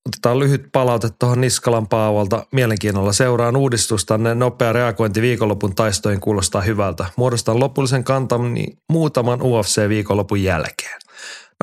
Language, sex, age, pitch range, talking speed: Finnish, male, 30-49, 100-125 Hz, 120 wpm